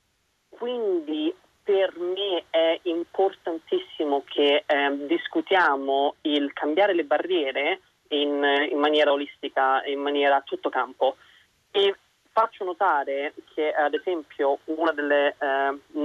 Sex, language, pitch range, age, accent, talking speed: male, Italian, 140-175 Hz, 30-49, native, 110 wpm